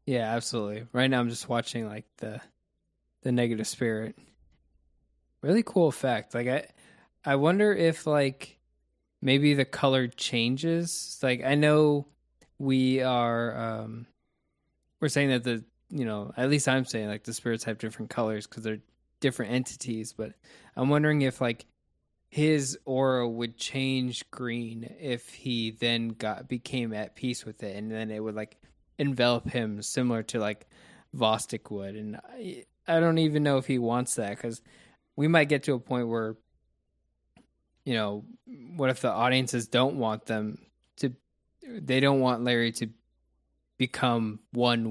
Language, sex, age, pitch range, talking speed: English, male, 20-39, 110-130 Hz, 155 wpm